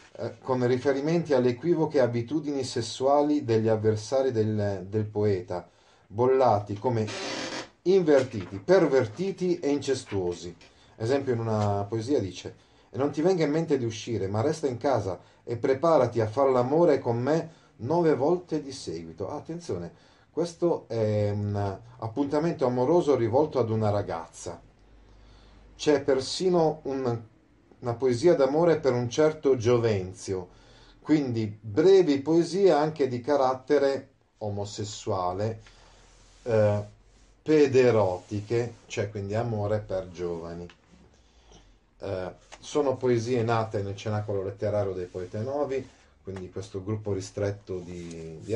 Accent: native